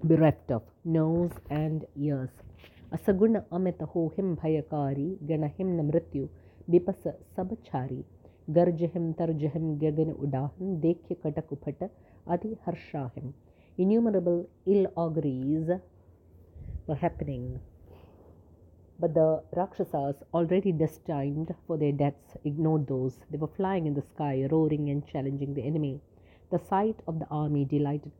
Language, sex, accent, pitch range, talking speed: English, female, Indian, 135-170 Hz, 80 wpm